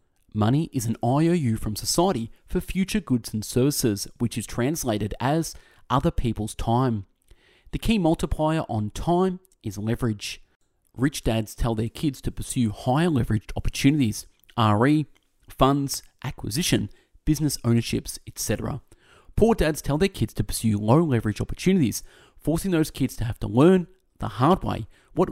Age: 30-49